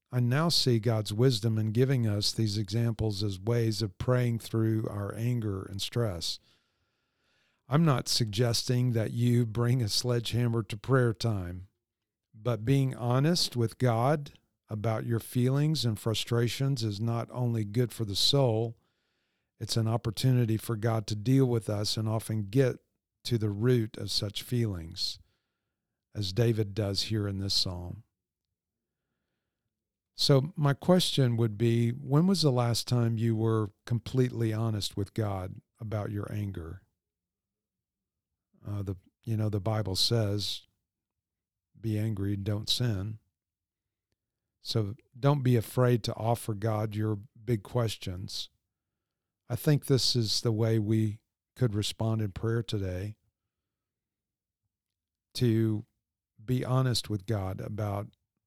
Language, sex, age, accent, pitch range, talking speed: English, male, 50-69, American, 100-120 Hz, 135 wpm